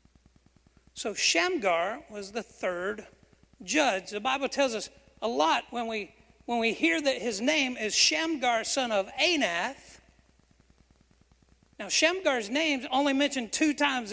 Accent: American